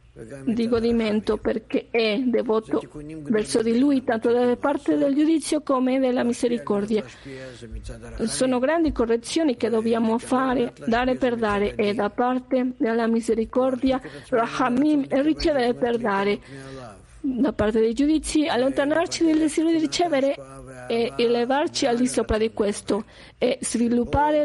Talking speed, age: 130 wpm, 40-59